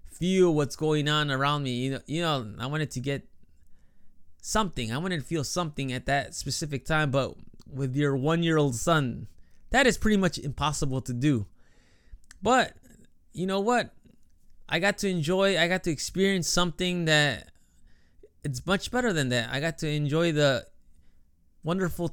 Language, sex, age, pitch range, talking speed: English, male, 20-39, 130-165 Hz, 165 wpm